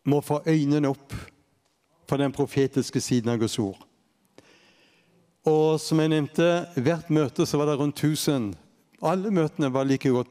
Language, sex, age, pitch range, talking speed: English, male, 60-79, 135-165 Hz, 140 wpm